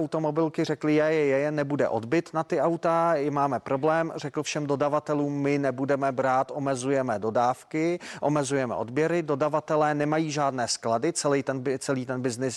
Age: 30-49